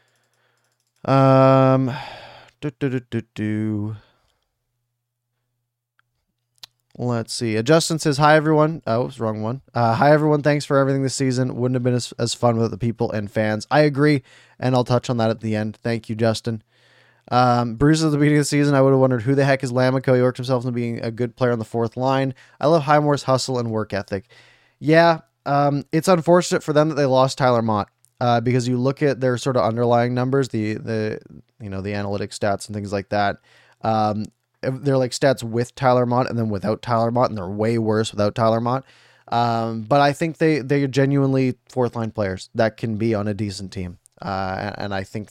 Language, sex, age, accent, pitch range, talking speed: English, male, 20-39, American, 110-135 Hz, 210 wpm